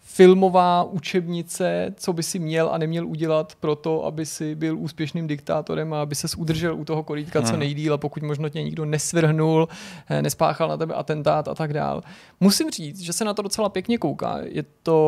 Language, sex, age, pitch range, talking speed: Czech, male, 30-49, 150-170 Hz, 190 wpm